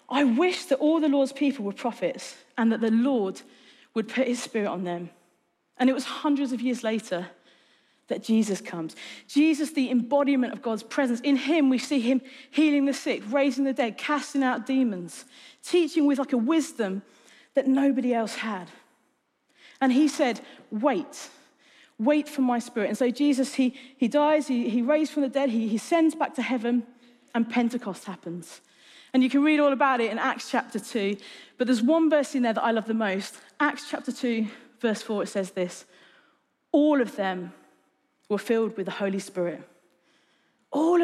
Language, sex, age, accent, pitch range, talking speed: English, female, 40-59, British, 225-285 Hz, 185 wpm